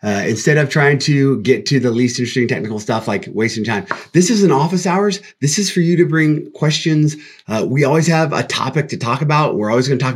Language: English